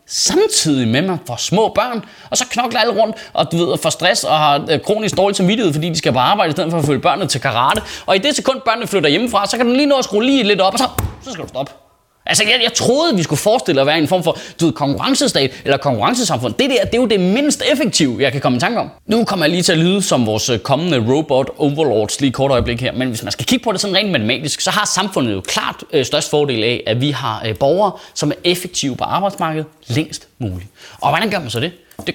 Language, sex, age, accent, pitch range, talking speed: Danish, male, 20-39, native, 140-225 Hz, 265 wpm